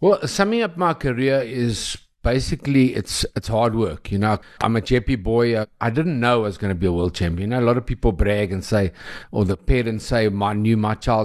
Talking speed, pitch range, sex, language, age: 240 wpm, 100-120 Hz, male, English, 60-79